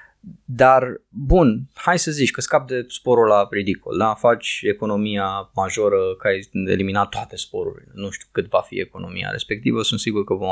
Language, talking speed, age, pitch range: Romanian, 170 wpm, 20-39, 115-155 Hz